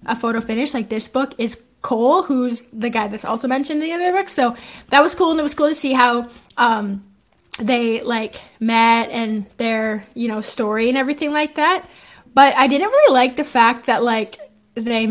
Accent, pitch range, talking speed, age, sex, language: American, 225-270 Hz, 205 wpm, 20-39, female, English